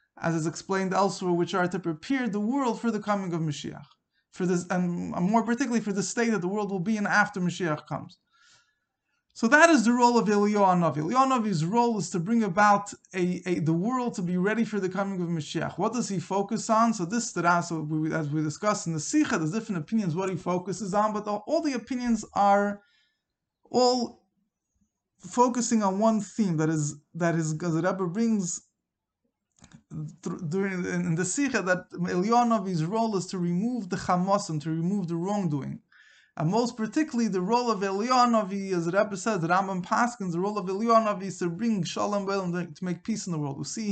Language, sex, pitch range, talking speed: English, male, 175-225 Hz, 200 wpm